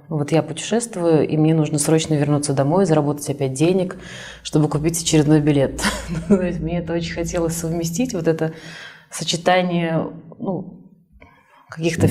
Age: 20-39